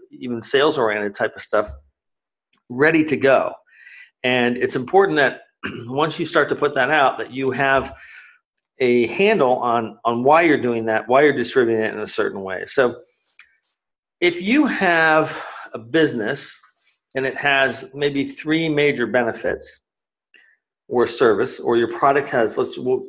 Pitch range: 120-175 Hz